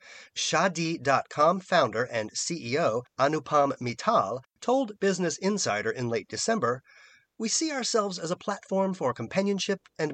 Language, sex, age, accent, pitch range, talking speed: English, male, 40-59, American, 125-200 Hz, 125 wpm